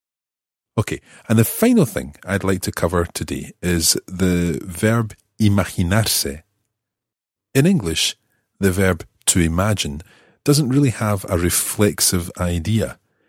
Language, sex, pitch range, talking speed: English, male, 80-110 Hz, 115 wpm